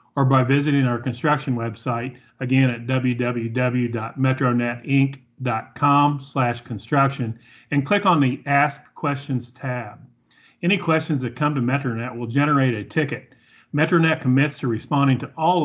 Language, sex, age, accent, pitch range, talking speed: English, male, 40-59, American, 120-140 Hz, 130 wpm